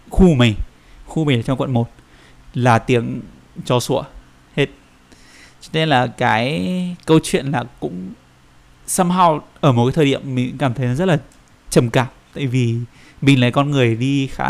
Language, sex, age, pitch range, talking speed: Vietnamese, male, 20-39, 120-150 Hz, 175 wpm